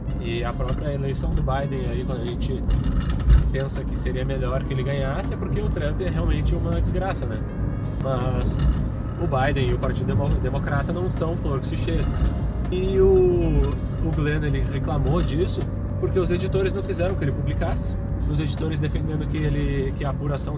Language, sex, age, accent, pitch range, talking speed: Portuguese, male, 20-39, Brazilian, 85-135 Hz, 175 wpm